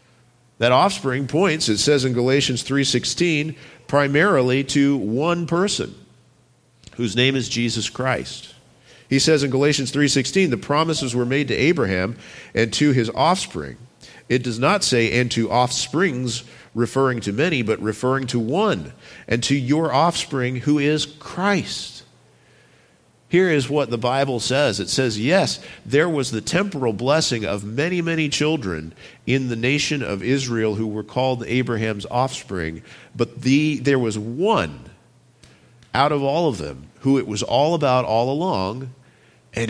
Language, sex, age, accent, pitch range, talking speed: English, male, 50-69, American, 120-145 Hz, 150 wpm